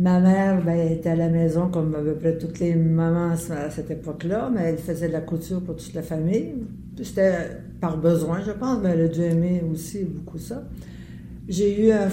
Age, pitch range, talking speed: 60-79, 165-190 Hz, 215 wpm